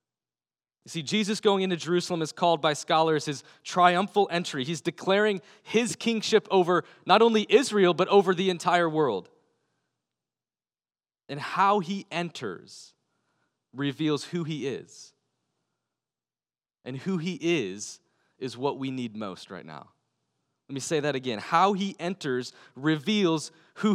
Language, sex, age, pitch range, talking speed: English, male, 20-39, 140-190 Hz, 140 wpm